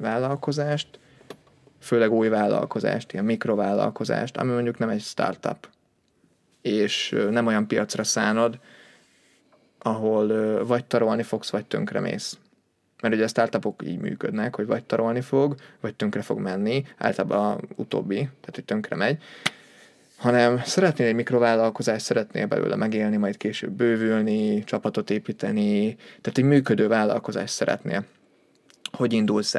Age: 20-39